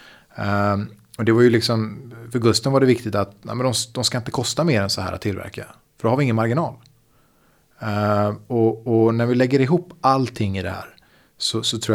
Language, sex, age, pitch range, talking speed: Swedish, male, 30-49, 100-120 Hz, 225 wpm